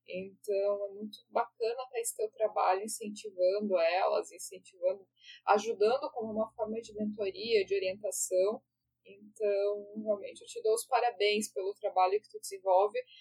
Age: 10-29